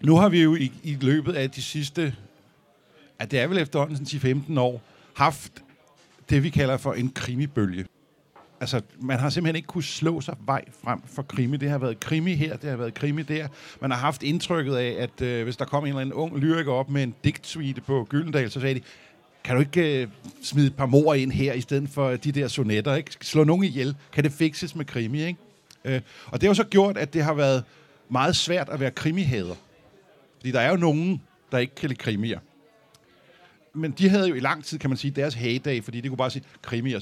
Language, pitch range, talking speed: Danish, 130-160 Hz, 225 wpm